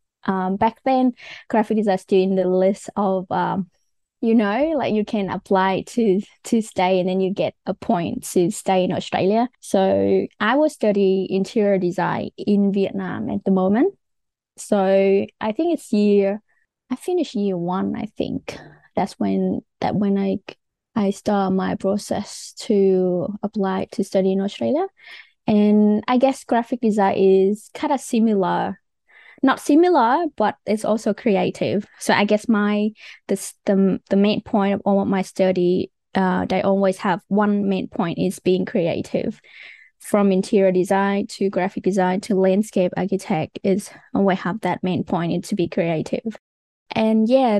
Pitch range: 190-220 Hz